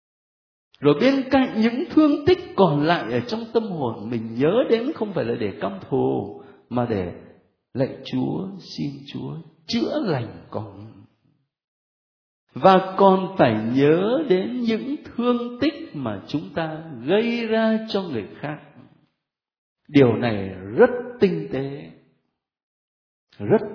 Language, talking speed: Vietnamese, 130 wpm